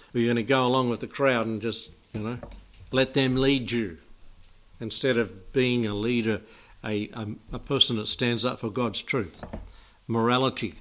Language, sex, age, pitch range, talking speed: English, male, 60-79, 100-125 Hz, 185 wpm